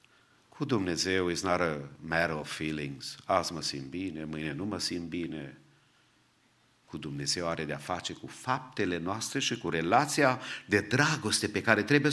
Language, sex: English, male